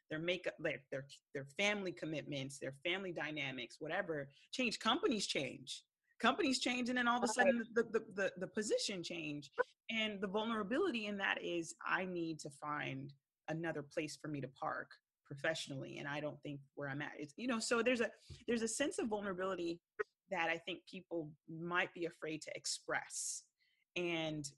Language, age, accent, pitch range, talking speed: English, 30-49, American, 155-210 Hz, 175 wpm